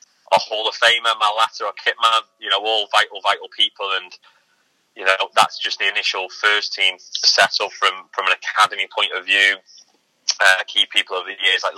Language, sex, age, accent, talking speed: English, male, 20-39, British, 200 wpm